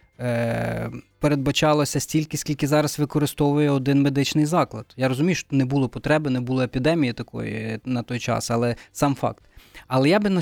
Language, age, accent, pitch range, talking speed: Ukrainian, 20-39, native, 125-160 Hz, 160 wpm